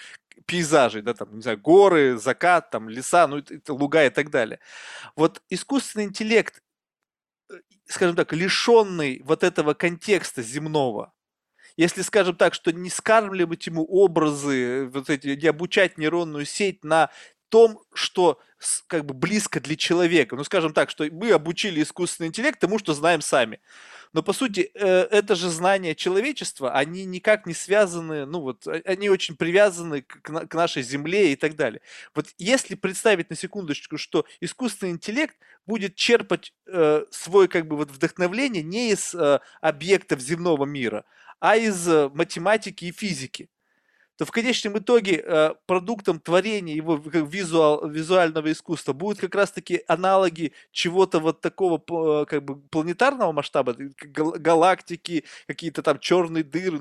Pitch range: 155-195 Hz